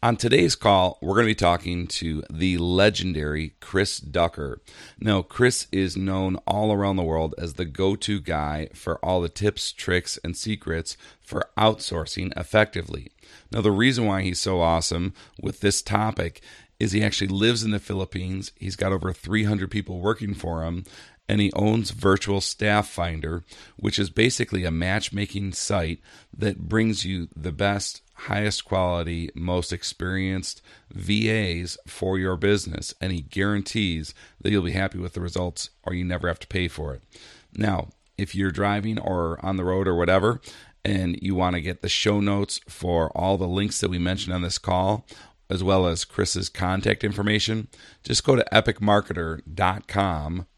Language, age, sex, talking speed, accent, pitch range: English, 40-59, male, 165 wpm, American, 85-105 Hz